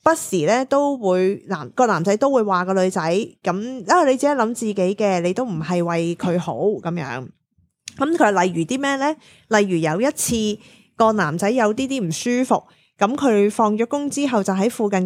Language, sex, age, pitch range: Chinese, female, 20-39, 180-240 Hz